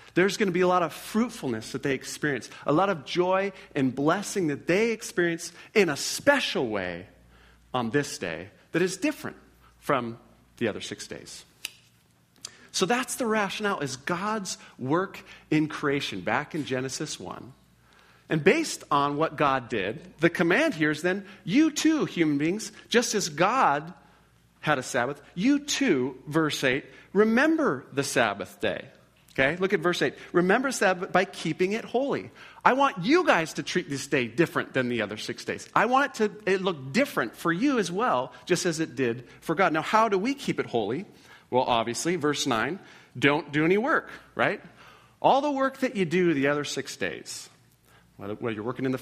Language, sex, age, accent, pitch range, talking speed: English, male, 40-59, American, 135-205 Hz, 185 wpm